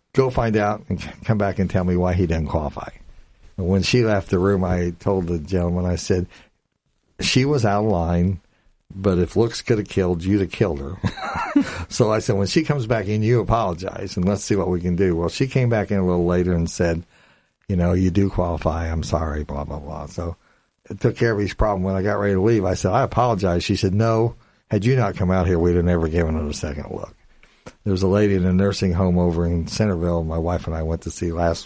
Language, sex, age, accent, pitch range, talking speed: English, male, 60-79, American, 90-110 Hz, 245 wpm